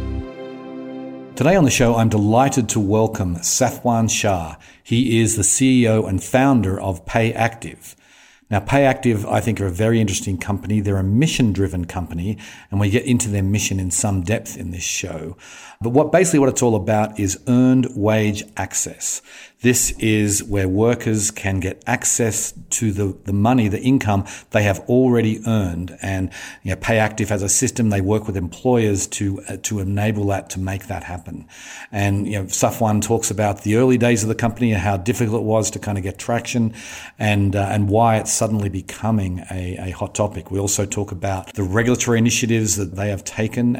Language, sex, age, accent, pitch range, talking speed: English, male, 50-69, Australian, 95-115 Hz, 185 wpm